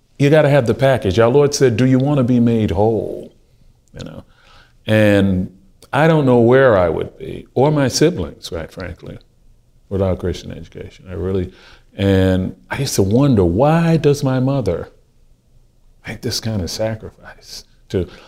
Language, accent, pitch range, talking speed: English, American, 105-155 Hz, 160 wpm